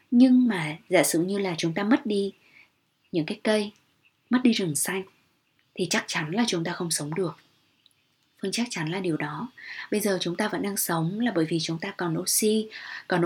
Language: Vietnamese